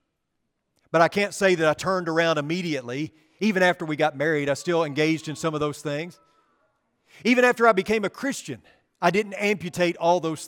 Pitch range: 165-230 Hz